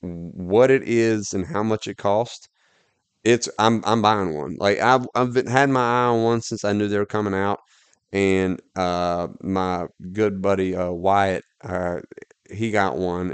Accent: American